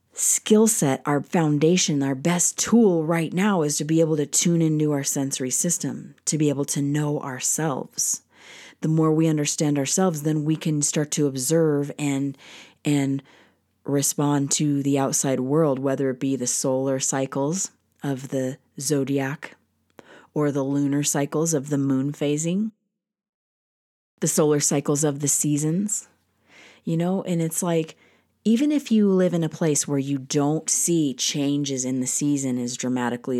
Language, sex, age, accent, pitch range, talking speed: English, female, 30-49, American, 135-165 Hz, 160 wpm